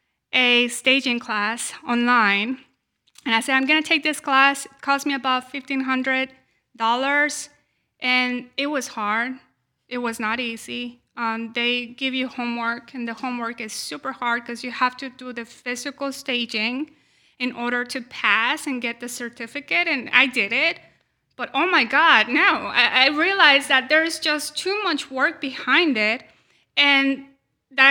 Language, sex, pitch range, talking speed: English, female, 245-300 Hz, 160 wpm